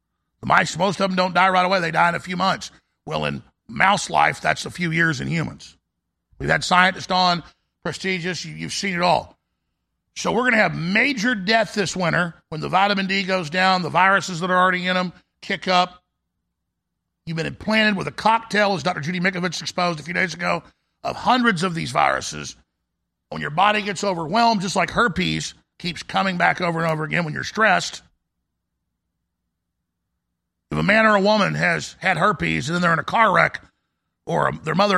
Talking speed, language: 195 wpm, English